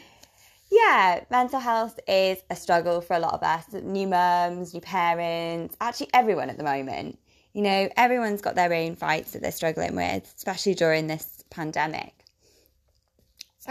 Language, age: English, 20-39